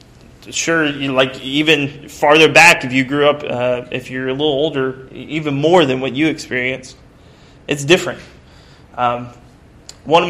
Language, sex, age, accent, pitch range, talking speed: English, male, 20-39, American, 130-160 Hz, 150 wpm